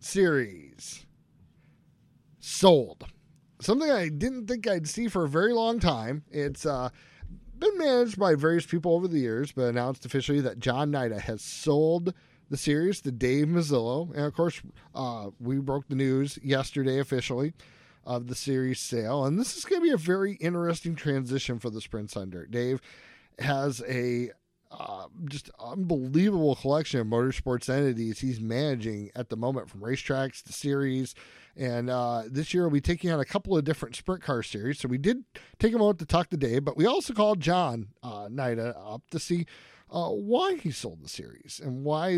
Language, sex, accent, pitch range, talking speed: English, male, American, 120-165 Hz, 180 wpm